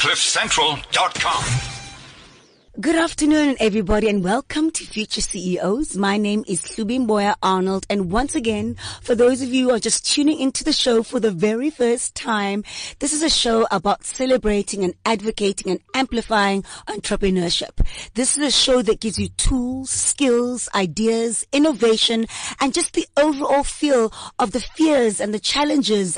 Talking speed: 155 wpm